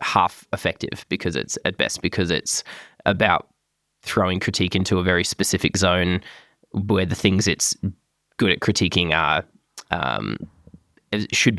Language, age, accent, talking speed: English, 20-39, Australian, 140 wpm